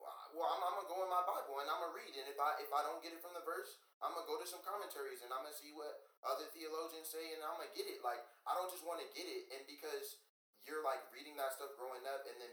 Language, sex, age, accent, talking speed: English, male, 20-39, American, 285 wpm